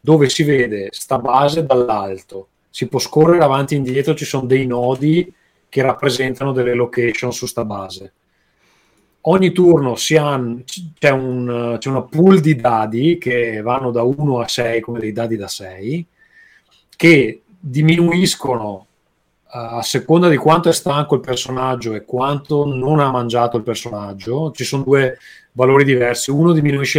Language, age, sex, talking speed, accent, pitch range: Italian, 30-49, male, 155 wpm, native, 120-140 Hz